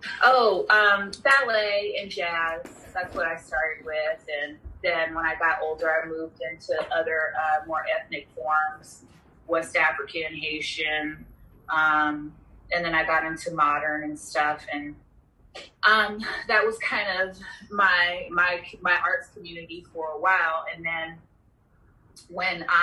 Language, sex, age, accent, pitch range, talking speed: English, female, 20-39, American, 160-190 Hz, 140 wpm